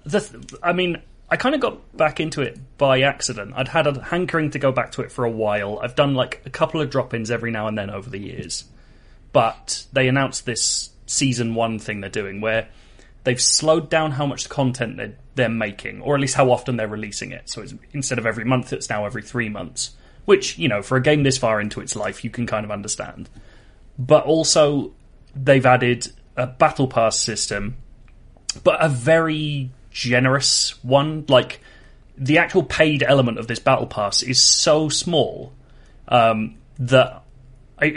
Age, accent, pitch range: 20-39, British, 115-140 Hz